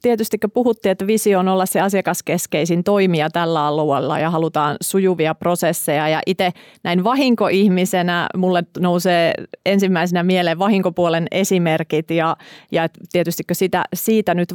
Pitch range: 160-180 Hz